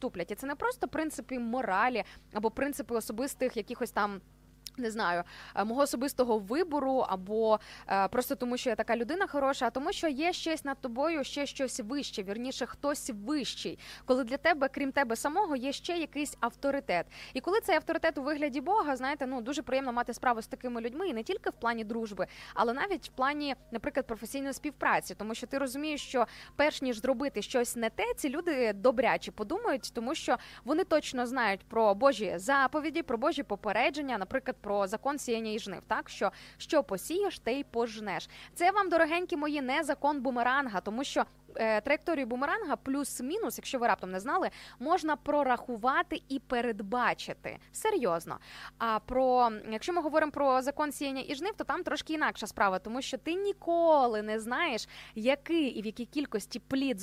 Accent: native